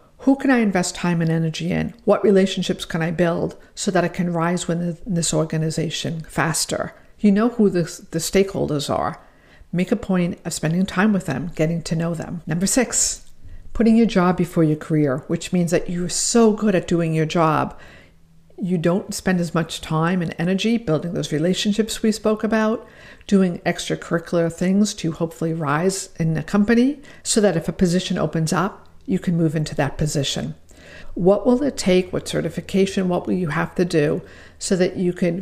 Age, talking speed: 50-69, 190 wpm